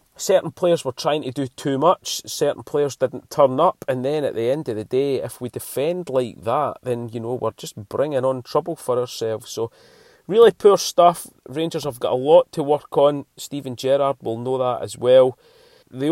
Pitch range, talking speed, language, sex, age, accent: 115-170 Hz, 210 wpm, English, male, 30-49, British